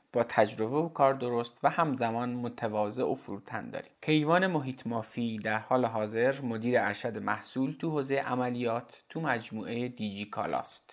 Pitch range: 115-140 Hz